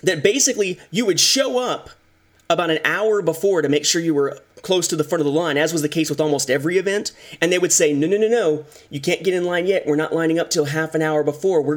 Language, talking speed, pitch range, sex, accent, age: English, 275 wpm, 150-210 Hz, male, American, 30-49